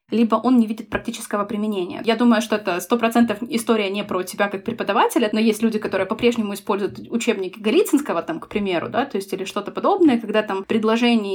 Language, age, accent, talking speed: Russian, 20-39, native, 200 wpm